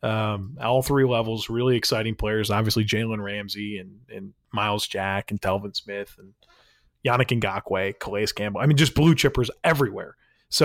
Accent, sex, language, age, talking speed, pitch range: American, male, English, 30-49, 165 wpm, 120-160 Hz